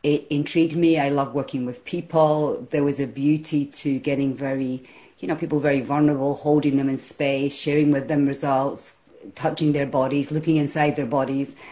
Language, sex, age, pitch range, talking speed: English, female, 40-59, 135-150 Hz, 180 wpm